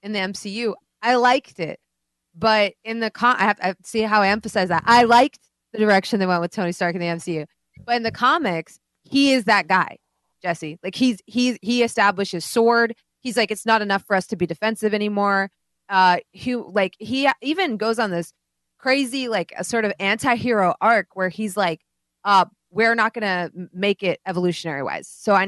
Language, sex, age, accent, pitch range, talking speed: English, female, 20-39, American, 180-230 Hz, 200 wpm